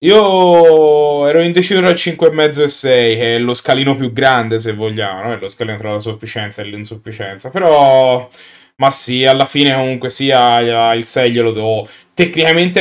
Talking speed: 175 wpm